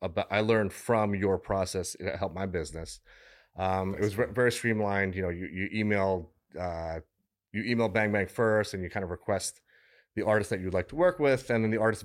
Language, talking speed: English, 220 wpm